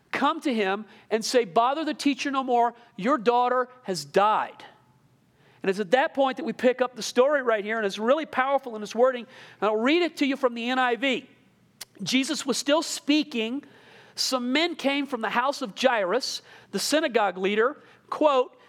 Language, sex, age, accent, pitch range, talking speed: English, male, 40-59, American, 220-275 Hz, 190 wpm